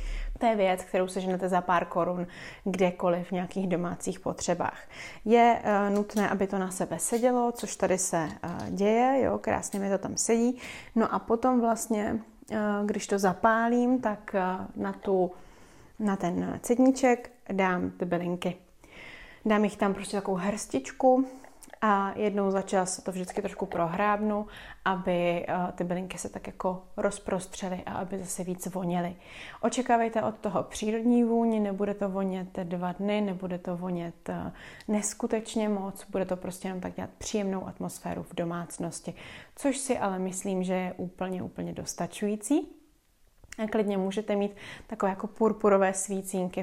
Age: 30-49